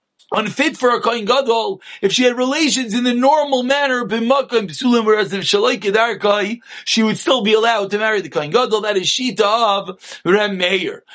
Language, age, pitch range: English, 40-59, 215-265 Hz